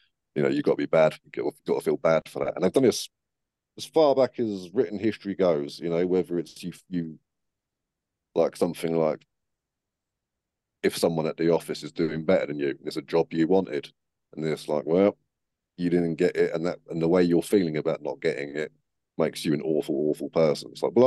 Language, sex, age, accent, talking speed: English, male, 40-59, British, 220 wpm